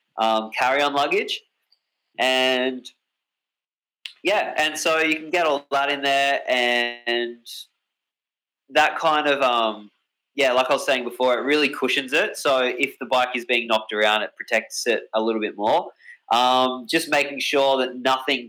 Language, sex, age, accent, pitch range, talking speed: English, male, 20-39, Australian, 115-135 Hz, 165 wpm